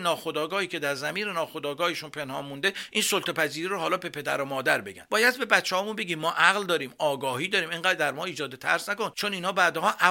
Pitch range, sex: 140-185 Hz, male